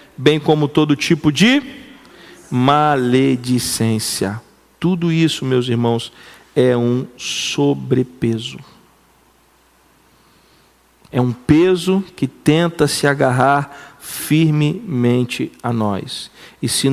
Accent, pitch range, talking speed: Brazilian, 125-165 Hz, 90 wpm